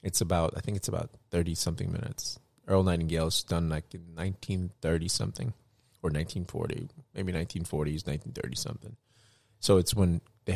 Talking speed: 125 wpm